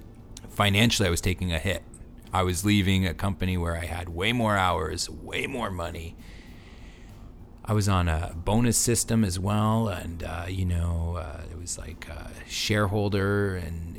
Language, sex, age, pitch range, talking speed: English, male, 40-59, 85-105 Hz, 165 wpm